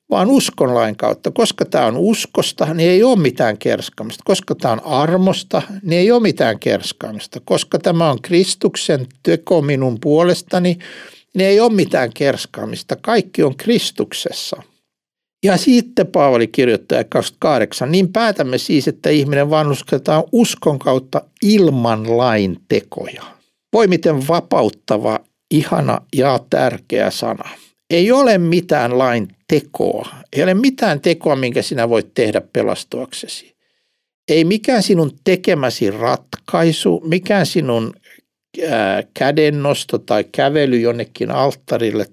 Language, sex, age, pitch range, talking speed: Finnish, male, 60-79, 130-190 Hz, 120 wpm